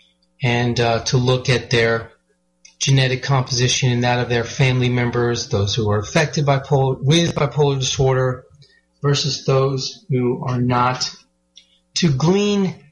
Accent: American